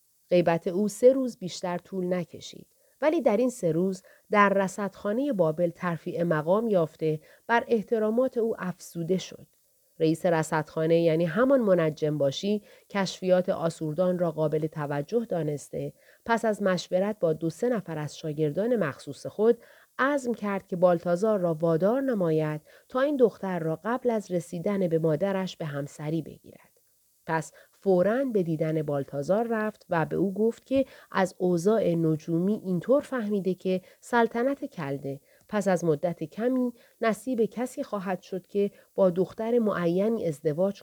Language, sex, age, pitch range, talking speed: Persian, female, 30-49, 160-215 Hz, 145 wpm